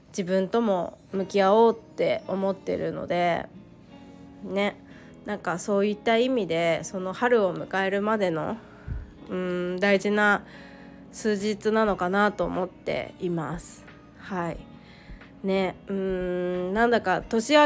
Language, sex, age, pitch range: Japanese, female, 20-39, 185-230 Hz